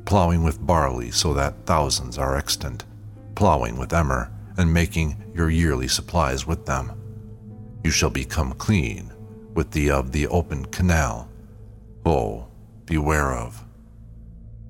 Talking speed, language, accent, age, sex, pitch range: 125 wpm, English, American, 50-69, male, 75-110 Hz